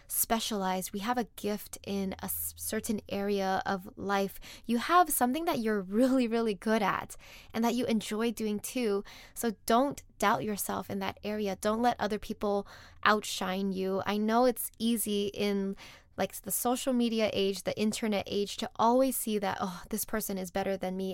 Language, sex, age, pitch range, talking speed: English, female, 10-29, 195-235 Hz, 180 wpm